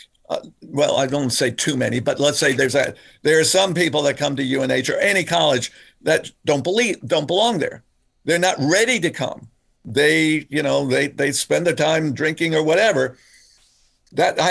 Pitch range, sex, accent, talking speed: 130-160 Hz, male, American, 195 wpm